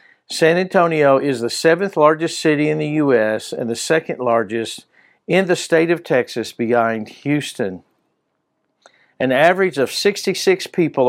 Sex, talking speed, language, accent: male, 140 wpm, English, American